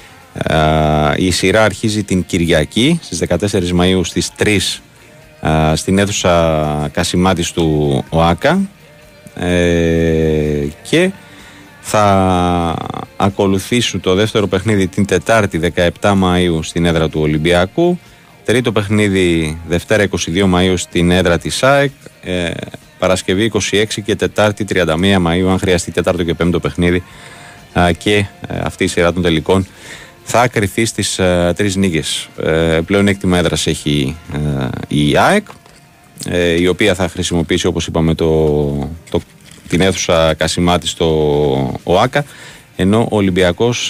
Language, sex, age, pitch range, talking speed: Greek, male, 30-49, 85-105 Hz, 125 wpm